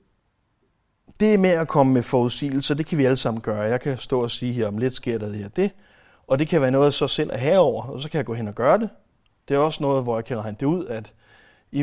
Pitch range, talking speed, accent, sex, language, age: 115-145 Hz, 270 wpm, native, male, Danish, 30-49